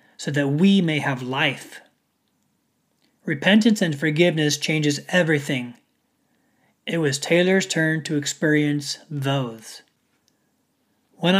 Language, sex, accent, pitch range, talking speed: English, male, American, 145-205 Hz, 100 wpm